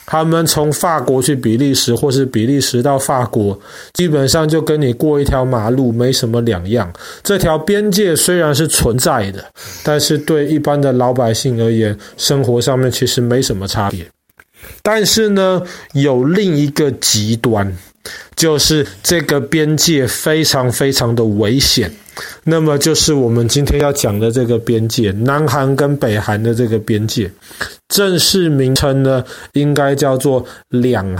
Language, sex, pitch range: Chinese, male, 115-150 Hz